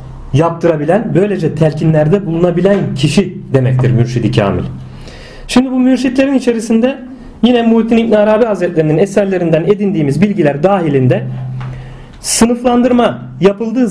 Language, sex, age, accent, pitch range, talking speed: Turkish, male, 40-59, native, 130-200 Hz, 100 wpm